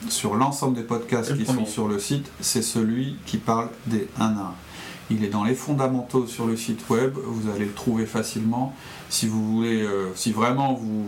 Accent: French